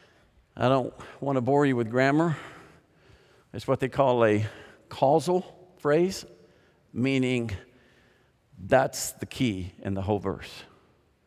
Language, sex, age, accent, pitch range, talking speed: English, male, 50-69, American, 120-170 Hz, 120 wpm